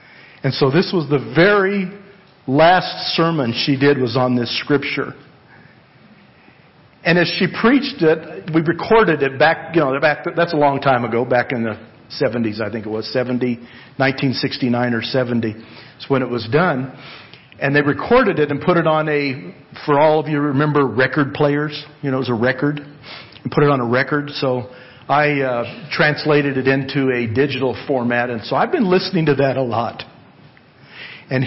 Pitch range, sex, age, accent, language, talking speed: 130-155 Hz, male, 50-69, American, English, 185 wpm